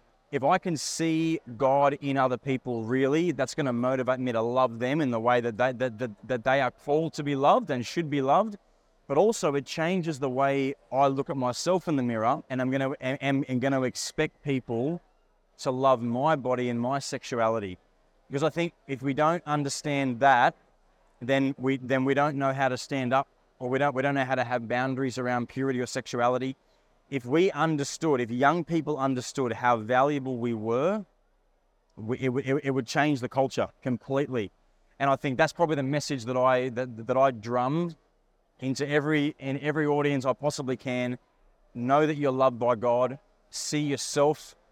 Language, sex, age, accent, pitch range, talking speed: English, male, 20-39, Australian, 125-145 Hz, 190 wpm